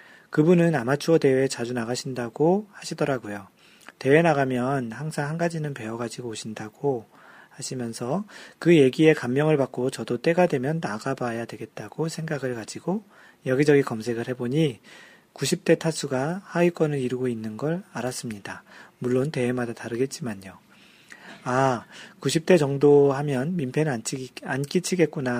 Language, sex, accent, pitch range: Korean, male, native, 125-165 Hz